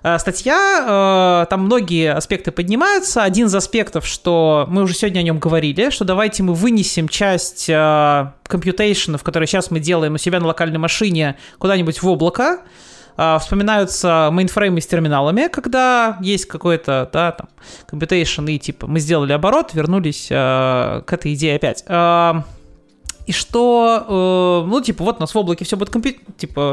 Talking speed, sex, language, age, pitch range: 145 wpm, male, Russian, 30-49, 165-230 Hz